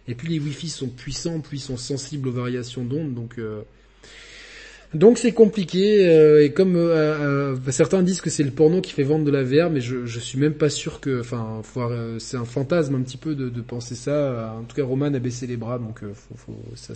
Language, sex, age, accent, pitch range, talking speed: French, male, 20-39, French, 120-150 Hz, 240 wpm